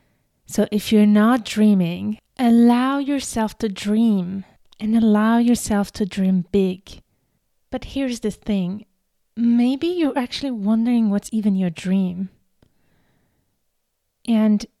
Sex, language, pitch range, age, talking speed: female, English, 205-260 Hz, 30-49, 115 wpm